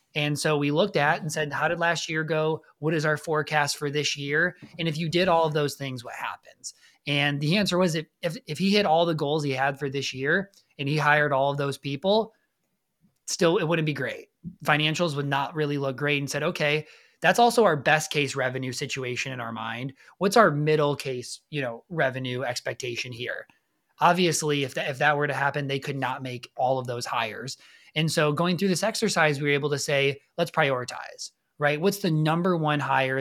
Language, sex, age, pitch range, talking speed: English, male, 20-39, 135-160 Hz, 215 wpm